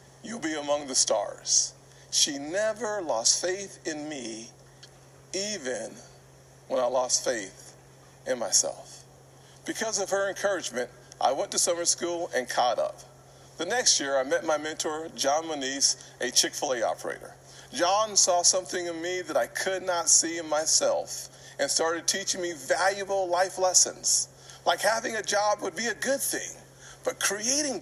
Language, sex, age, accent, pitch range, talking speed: English, male, 50-69, American, 150-200 Hz, 155 wpm